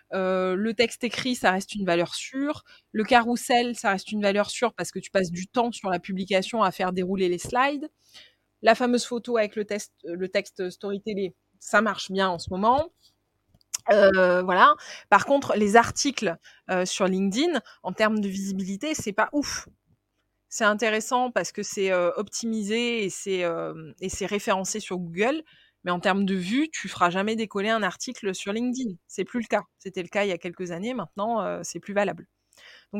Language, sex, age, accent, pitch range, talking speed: French, female, 20-39, French, 185-225 Hz, 195 wpm